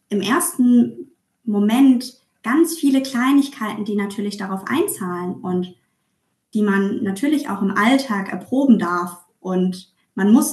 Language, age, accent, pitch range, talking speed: German, 20-39, German, 190-235 Hz, 125 wpm